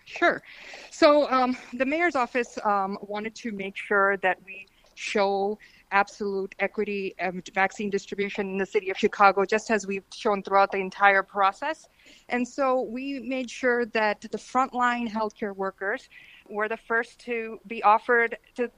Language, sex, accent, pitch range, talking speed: English, female, American, 200-235 Hz, 155 wpm